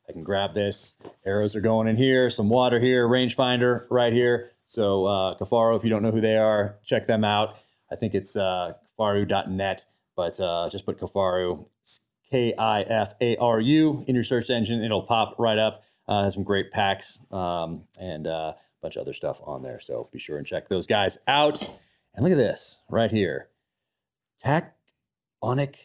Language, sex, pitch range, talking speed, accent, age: English, male, 100-130 Hz, 180 wpm, American, 30-49